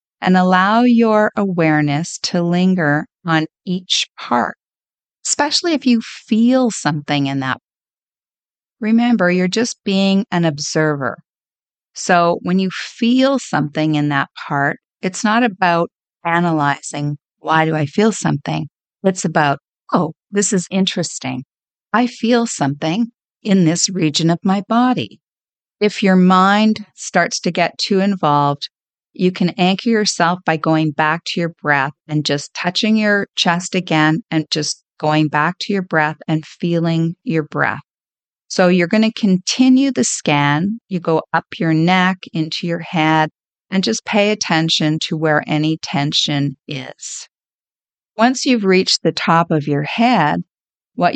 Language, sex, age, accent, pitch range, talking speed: English, female, 50-69, American, 155-205 Hz, 145 wpm